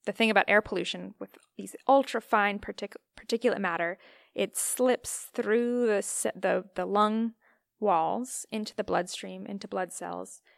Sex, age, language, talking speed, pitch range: female, 20-39, English, 145 wpm, 185-215 Hz